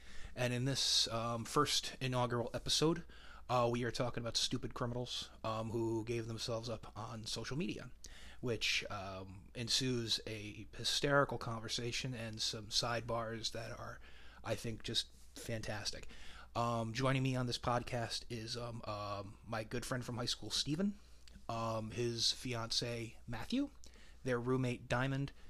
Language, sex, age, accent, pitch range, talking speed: English, male, 30-49, American, 110-125 Hz, 140 wpm